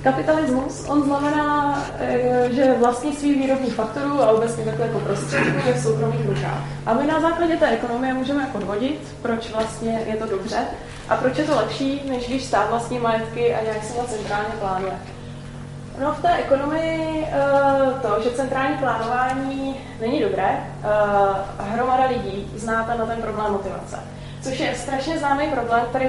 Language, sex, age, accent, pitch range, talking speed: Czech, female, 20-39, native, 205-265 Hz, 160 wpm